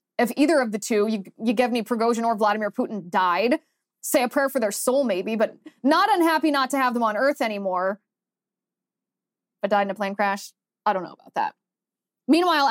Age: 20-39